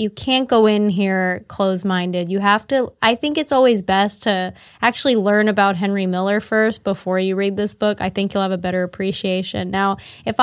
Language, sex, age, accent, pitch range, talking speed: English, female, 10-29, American, 190-215 Hz, 195 wpm